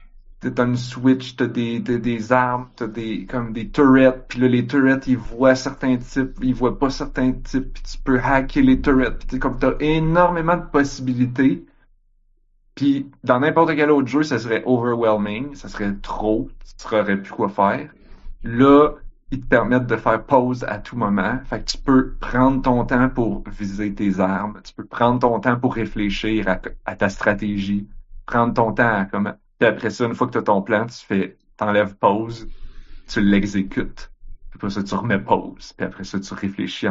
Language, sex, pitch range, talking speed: French, male, 100-130 Hz, 195 wpm